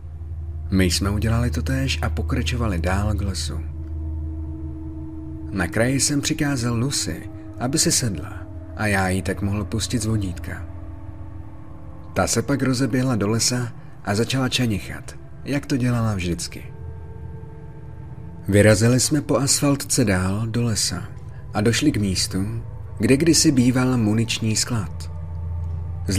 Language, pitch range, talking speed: Czech, 85-120 Hz, 130 wpm